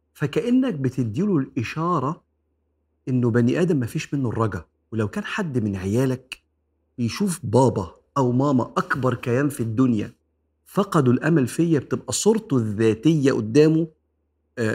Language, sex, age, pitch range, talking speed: Arabic, male, 40-59, 105-150 Hz, 125 wpm